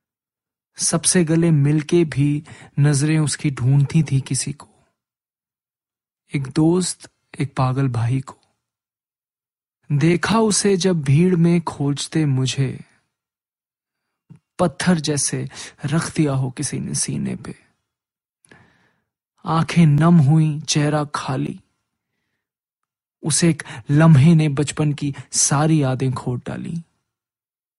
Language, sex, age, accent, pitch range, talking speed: Hindi, male, 20-39, native, 140-170 Hz, 100 wpm